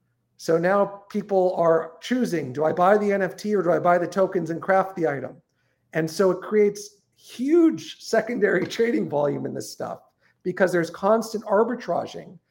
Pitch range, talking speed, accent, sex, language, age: 160-205 Hz, 170 wpm, American, male, English, 50-69